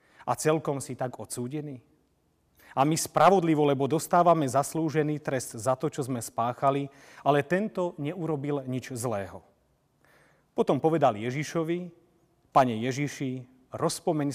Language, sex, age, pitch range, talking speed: Slovak, male, 40-59, 125-170 Hz, 115 wpm